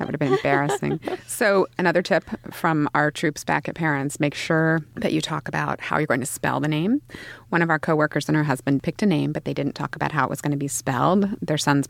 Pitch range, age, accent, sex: 145-195 Hz, 30-49, American, female